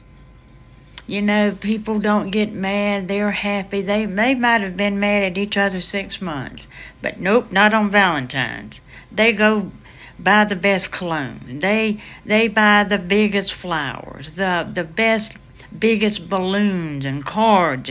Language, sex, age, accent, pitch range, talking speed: English, female, 60-79, American, 145-210 Hz, 145 wpm